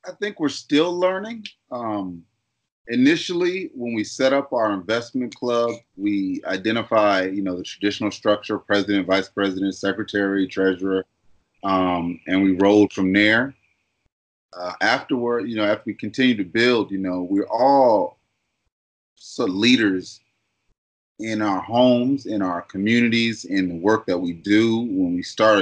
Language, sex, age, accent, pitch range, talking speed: English, male, 30-49, American, 95-120 Hz, 150 wpm